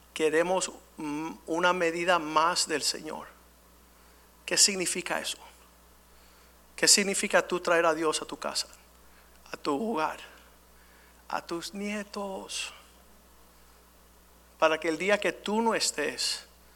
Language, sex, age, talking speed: Spanish, male, 60-79, 115 wpm